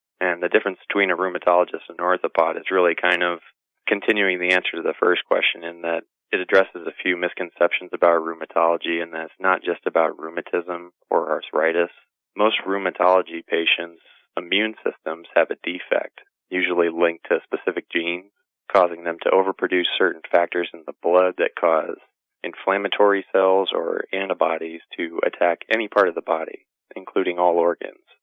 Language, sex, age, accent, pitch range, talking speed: English, male, 20-39, American, 85-95 Hz, 165 wpm